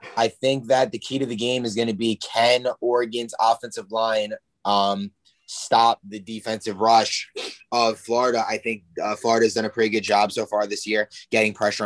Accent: American